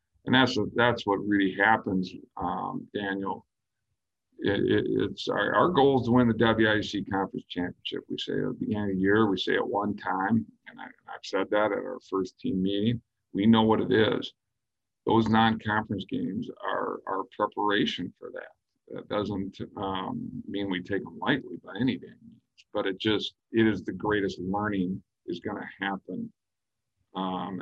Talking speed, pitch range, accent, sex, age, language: 175 wpm, 95-110 Hz, American, male, 50-69, English